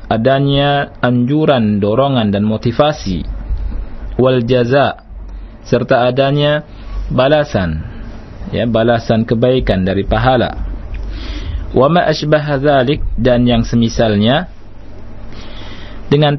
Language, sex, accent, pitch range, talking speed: Indonesian, male, native, 100-125 Hz, 75 wpm